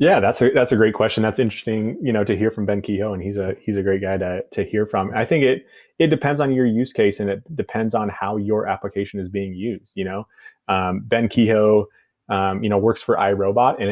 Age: 30-49